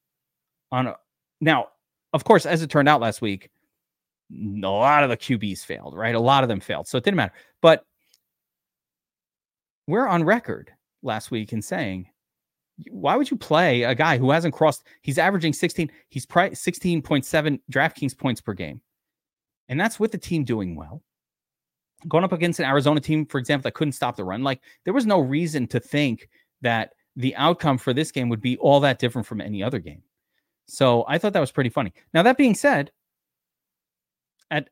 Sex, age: male, 30-49